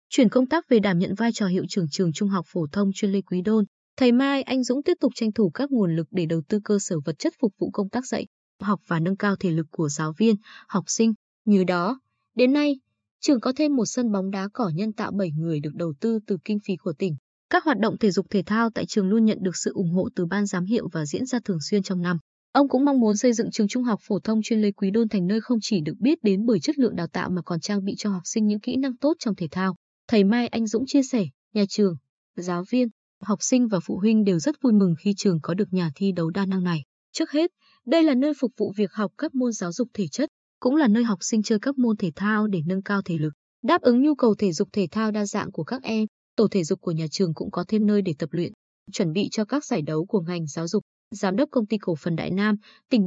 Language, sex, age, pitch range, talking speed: Vietnamese, female, 20-39, 185-240 Hz, 280 wpm